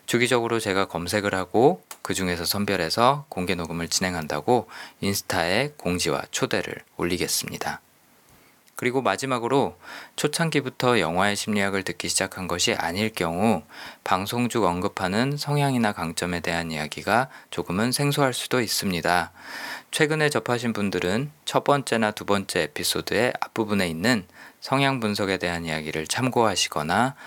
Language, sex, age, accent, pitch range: Korean, male, 20-39, native, 90-125 Hz